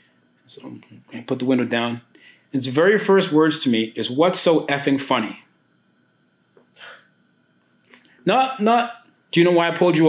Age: 30-49